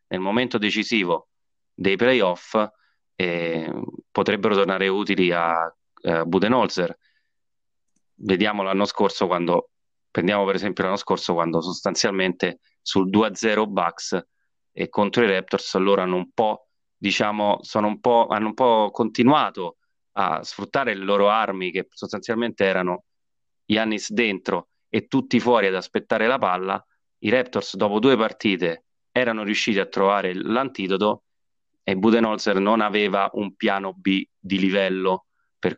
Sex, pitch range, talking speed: male, 95-110 Hz, 135 wpm